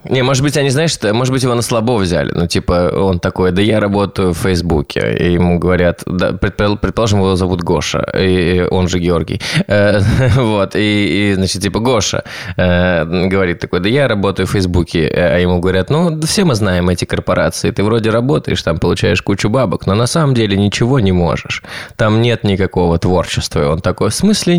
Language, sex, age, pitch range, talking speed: Russian, male, 20-39, 95-145 Hz, 185 wpm